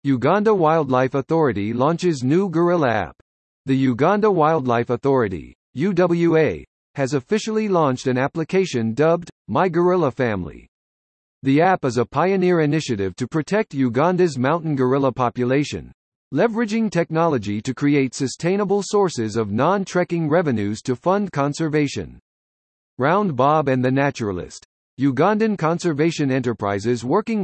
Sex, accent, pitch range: male, American, 125-170 Hz